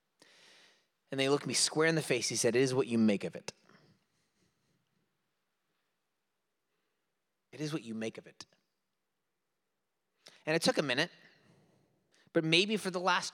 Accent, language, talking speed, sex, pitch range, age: American, English, 155 wpm, male, 160-235 Hz, 30-49